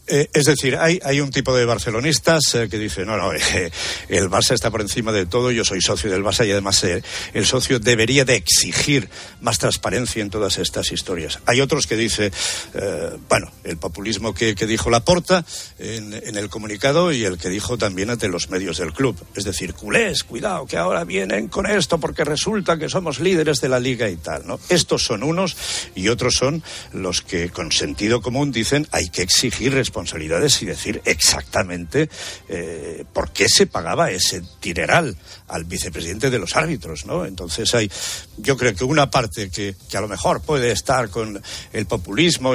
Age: 60-79